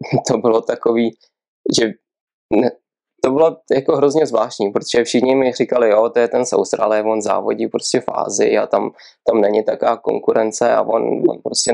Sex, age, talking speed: male, 20-39, 175 wpm